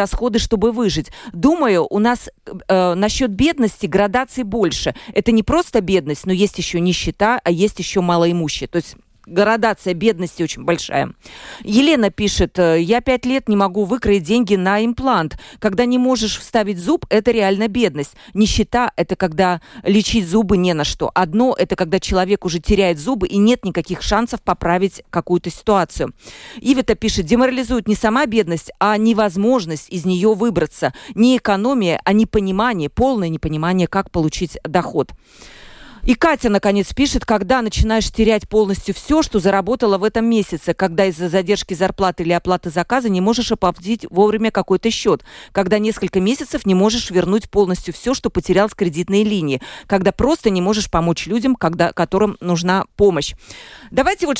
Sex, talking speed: female, 160 wpm